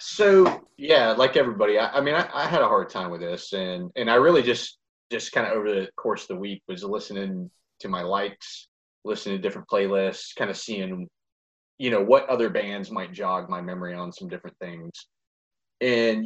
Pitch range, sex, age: 95-145 Hz, male, 30-49